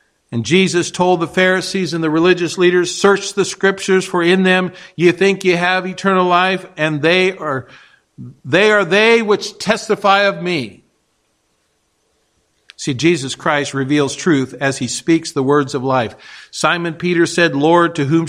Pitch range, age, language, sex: 150-190 Hz, 50-69, English, male